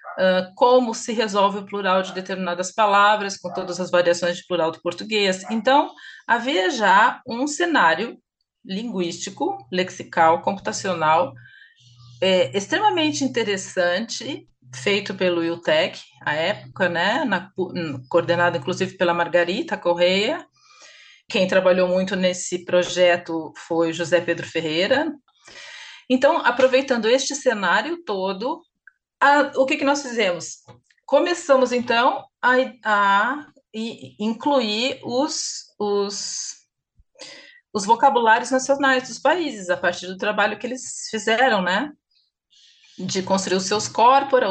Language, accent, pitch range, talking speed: Portuguese, Brazilian, 180-260 Hz, 115 wpm